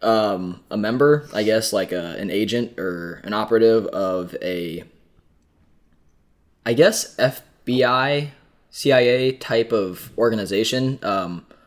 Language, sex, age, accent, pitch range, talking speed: English, male, 10-29, American, 100-120 Hz, 110 wpm